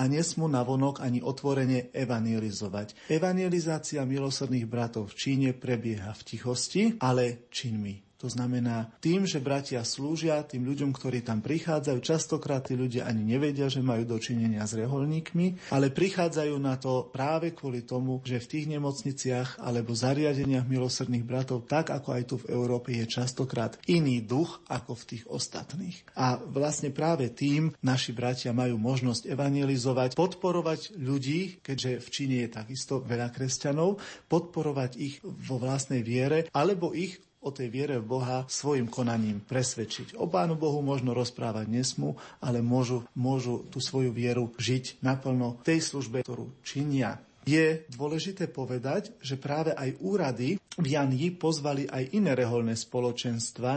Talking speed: 145 wpm